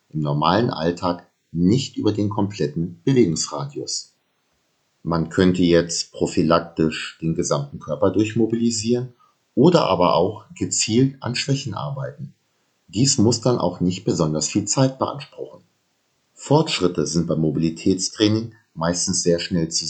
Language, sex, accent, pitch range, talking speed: German, male, German, 80-110 Hz, 120 wpm